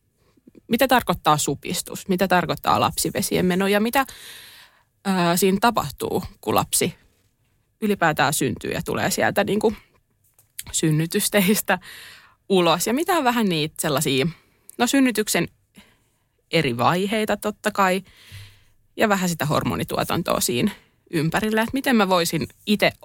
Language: Finnish